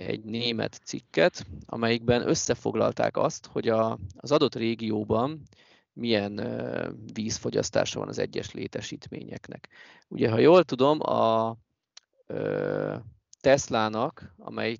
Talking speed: 105 wpm